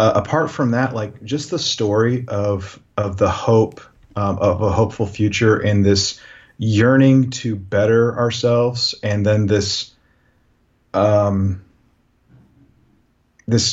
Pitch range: 100-115 Hz